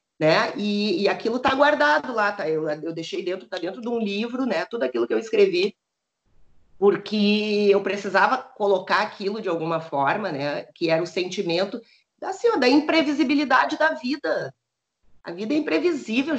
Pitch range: 185-255 Hz